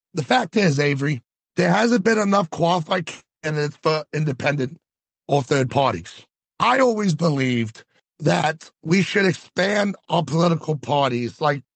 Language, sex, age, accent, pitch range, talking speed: English, male, 60-79, American, 145-200 Hz, 135 wpm